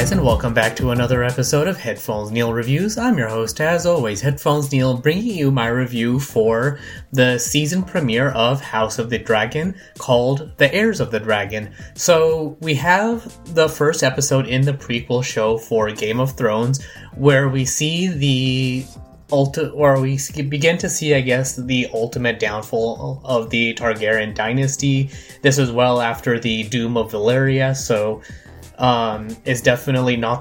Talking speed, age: 160 wpm, 20-39